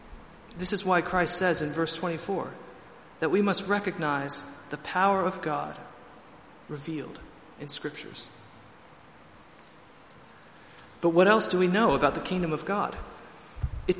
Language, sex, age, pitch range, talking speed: English, male, 40-59, 150-190 Hz, 135 wpm